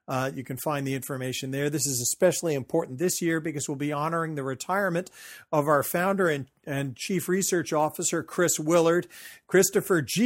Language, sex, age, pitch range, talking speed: English, male, 50-69, 135-160 Hz, 180 wpm